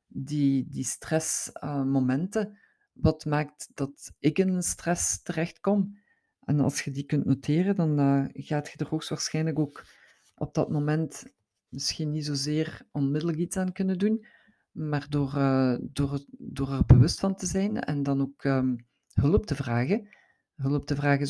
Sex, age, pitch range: female, 50-69, 135-155 Hz